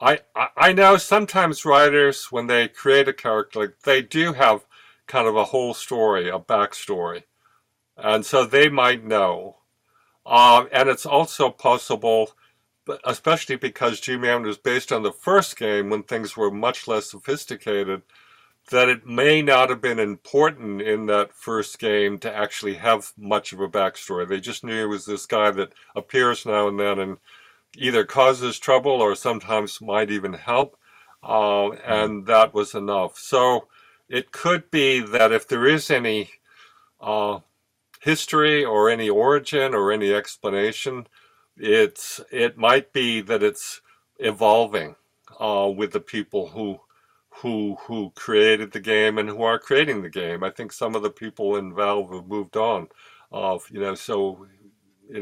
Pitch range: 105-135 Hz